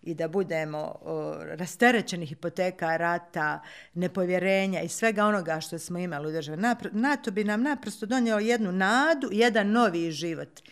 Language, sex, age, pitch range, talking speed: Croatian, female, 50-69, 165-210 Hz, 150 wpm